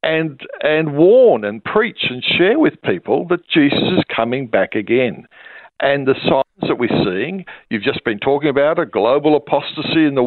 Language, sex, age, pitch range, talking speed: English, male, 60-79, 145-185 Hz, 180 wpm